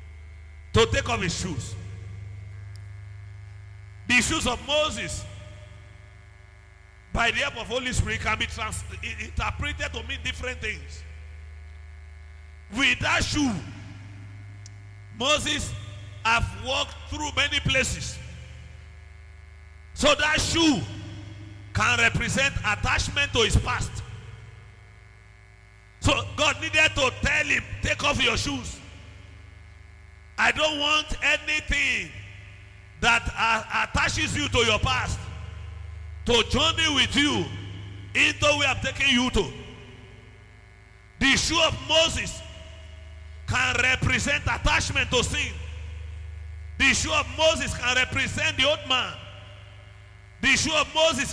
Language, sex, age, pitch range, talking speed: English, male, 50-69, 85-105 Hz, 110 wpm